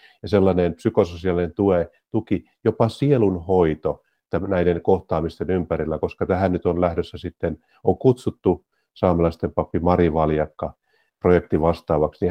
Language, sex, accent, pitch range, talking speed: Finnish, male, native, 85-100 Hz, 105 wpm